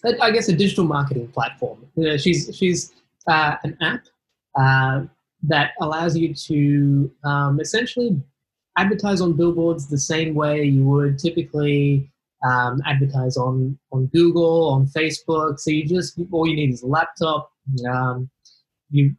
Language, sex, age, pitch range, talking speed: English, male, 20-39, 135-160 Hz, 145 wpm